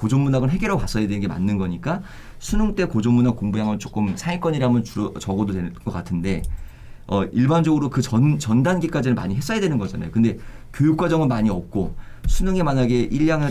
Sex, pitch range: male, 105-145 Hz